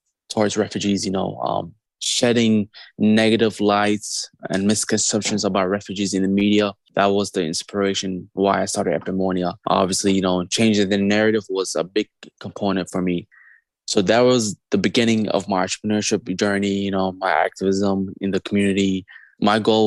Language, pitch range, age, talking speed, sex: English, 95-105 Hz, 20-39, 155 wpm, male